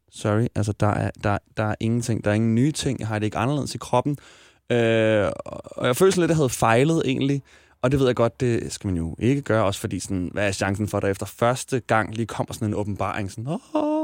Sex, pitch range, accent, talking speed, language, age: male, 110-140 Hz, native, 255 wpm, Danish, 20-39